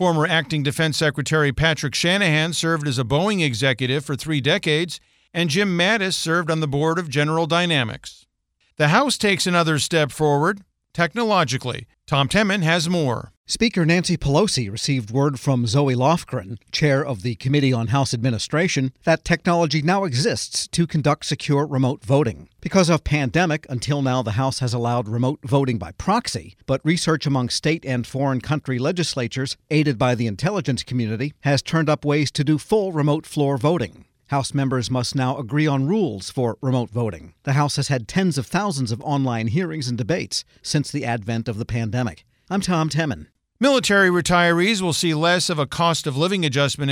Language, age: English, 50-69